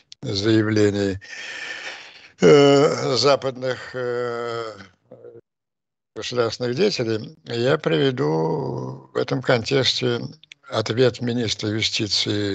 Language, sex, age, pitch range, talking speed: Russian, male, 60-79, 100-125 Hz, 65 wpm